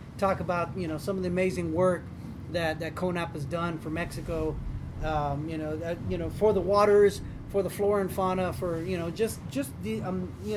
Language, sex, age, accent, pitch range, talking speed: English, male, 30-49, American, 155-195 Hz, 215 wpm